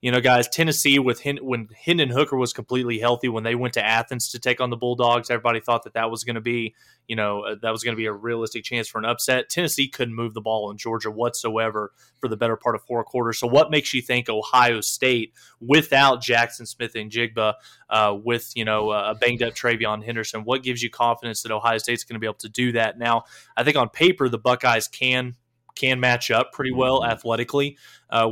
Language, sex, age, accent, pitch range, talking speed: English, male, 20-39, American, 115-135 Hz, 230 wpm